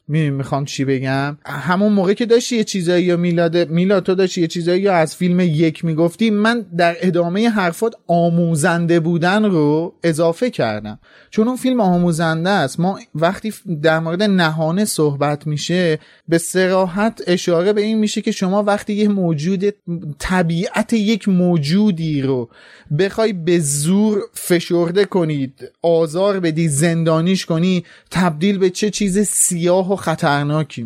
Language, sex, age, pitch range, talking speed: Persian, male, 30-49, 160-205 Hz, 140 wpm